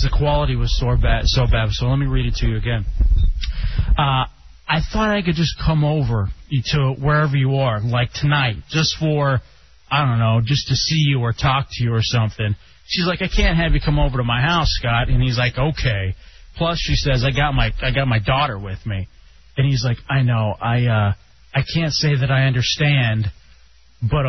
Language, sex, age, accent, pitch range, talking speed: English, male, 30-49, American, 115-160 Hz, 210 wpm